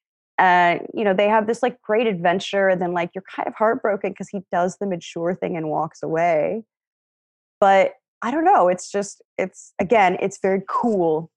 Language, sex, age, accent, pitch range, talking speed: English, female, 20-39, American, 175-245 Hz, 195 wpm